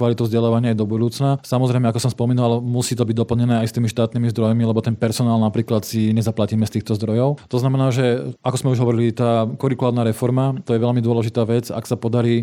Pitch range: 115-130 Hz